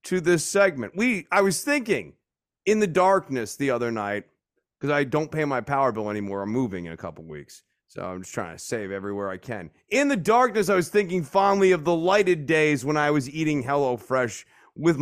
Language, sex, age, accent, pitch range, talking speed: English, male, 30-49, American, 130-215 Hz, 215 wpm